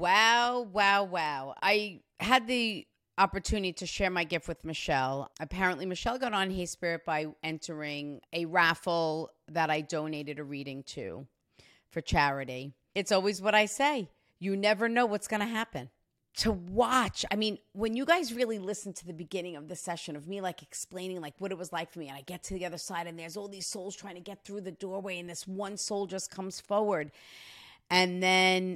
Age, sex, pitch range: 40-59, female, 145-195 Hz